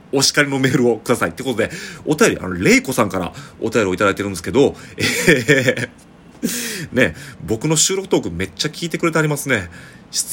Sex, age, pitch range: male, 30-49, 95-155 Hz